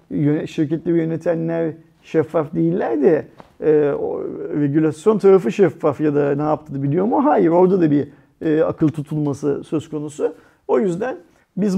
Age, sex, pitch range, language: 40-59, male, 135-170 Hz, Turkish